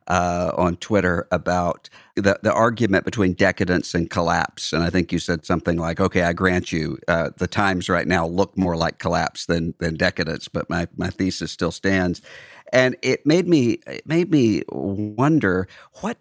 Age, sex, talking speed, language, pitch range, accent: 50-69, male, 180 wpm, English, 90-105 Hz, American